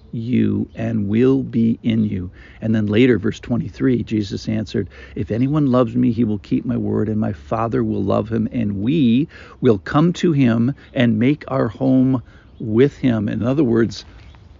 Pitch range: 105-140 Hz